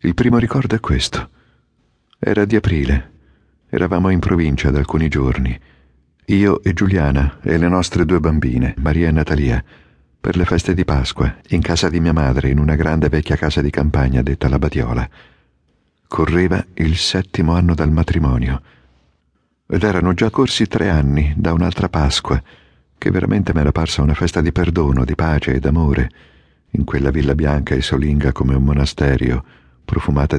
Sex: male